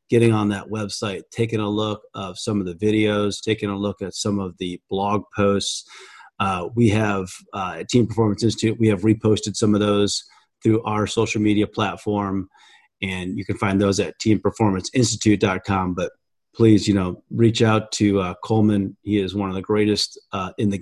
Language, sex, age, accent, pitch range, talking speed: English, male, 30-49, American, 100-115 Hz, 185 wpm